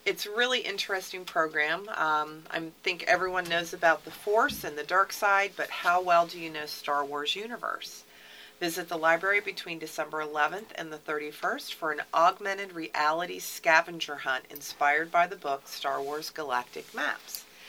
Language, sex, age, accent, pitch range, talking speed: English, female, 40-59, American, 155-185 Hz, 165 wpm